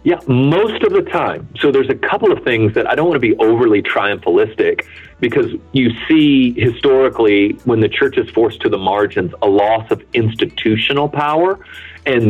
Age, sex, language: 40-59, male, English